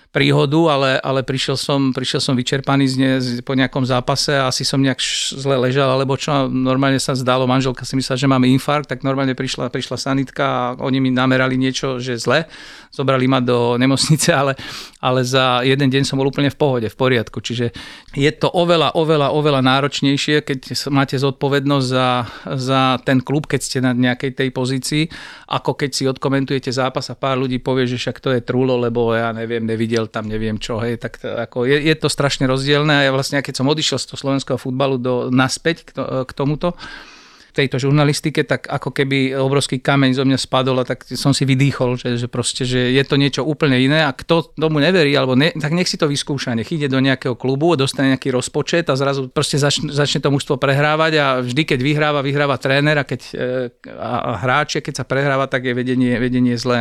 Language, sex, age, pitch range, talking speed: Slovak, male, 40-59, 130-140 Hz, 205 wpm